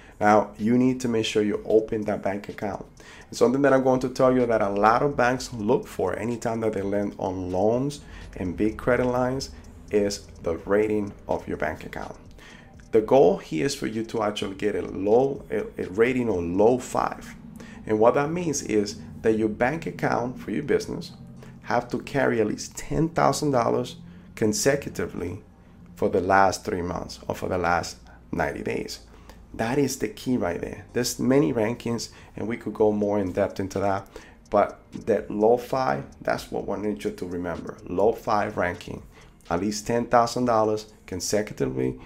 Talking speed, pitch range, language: 180 wpm, 100-125 Hz, English